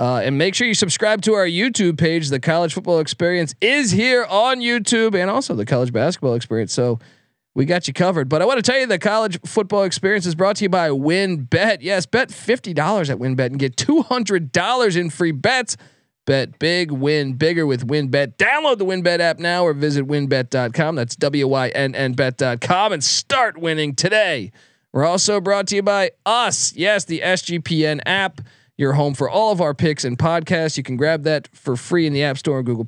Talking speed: 195 wpm